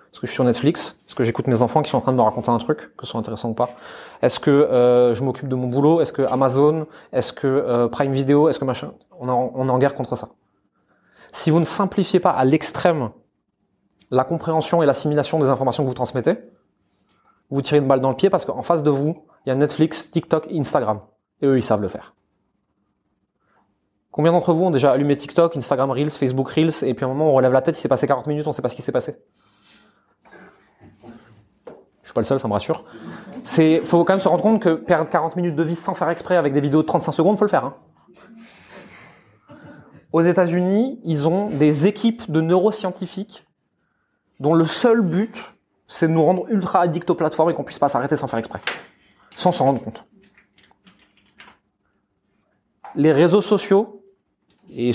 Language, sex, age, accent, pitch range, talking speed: French, male, 20-39, French, 130-170 Hz, 210 wpm